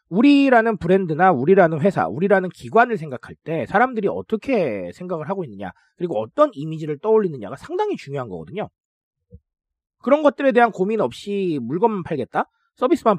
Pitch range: 150-230 Hz